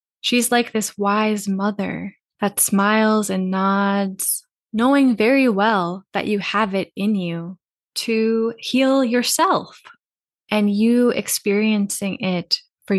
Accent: American